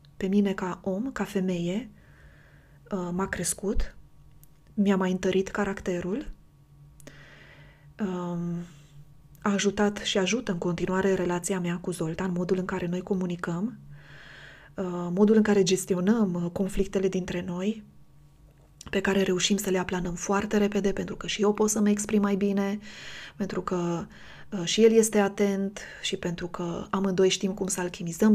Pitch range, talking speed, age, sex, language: 175-205 Hz, 140 wpm, 20-39, female, Romanian